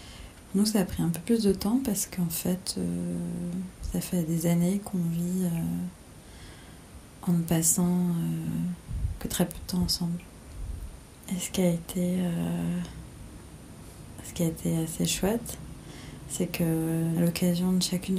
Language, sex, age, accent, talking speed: French, female, 30-49, French, 155 wpm